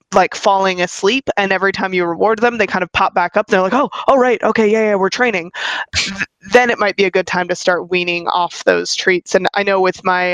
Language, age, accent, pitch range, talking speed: English, 20-39, American, 180-215 Hz, 260 wpm